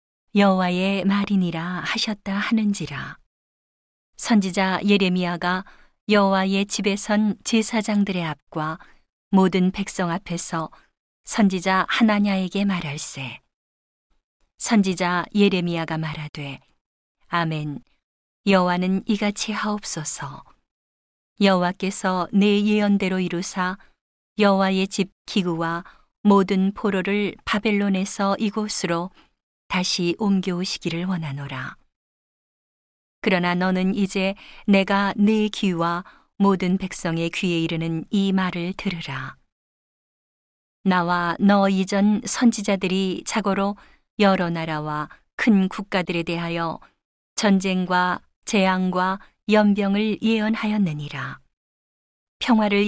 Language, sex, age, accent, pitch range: Korean, female, 40-59, native, 175-205 Hz